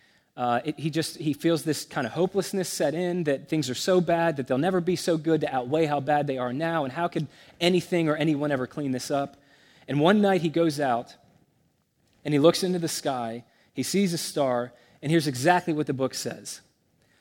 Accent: American